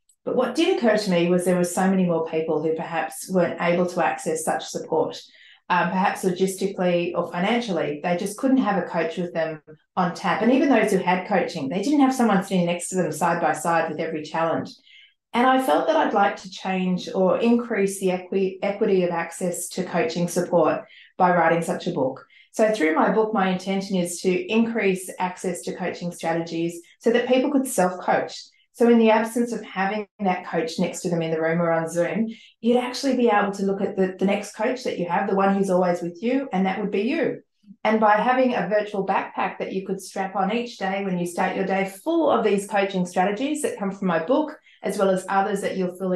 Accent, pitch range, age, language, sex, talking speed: Australian, 175-220 Hz, 40-59, English, female, 225 wpm